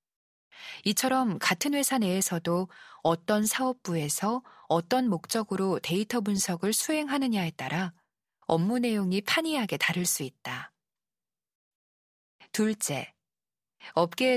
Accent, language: native, Korean